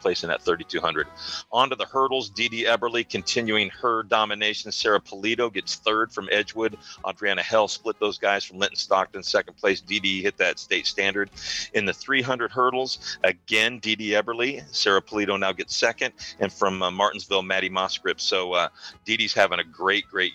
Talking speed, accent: 190 wpm, American